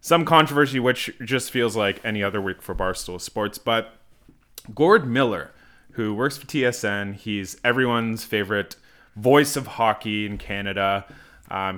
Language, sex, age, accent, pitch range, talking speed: English, male, 20-39, American, 100-125 Hz, 145 wpm